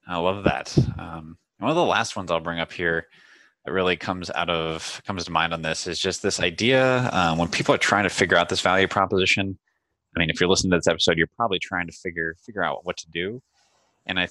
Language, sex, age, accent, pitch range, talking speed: English, male, 20-39, American, 80-95 Hz, 245 wpm